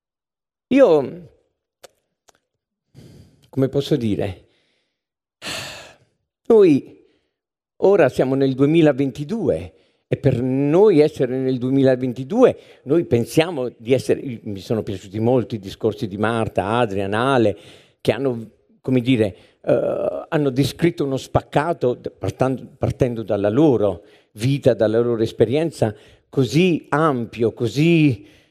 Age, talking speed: 50-69, 105 wpm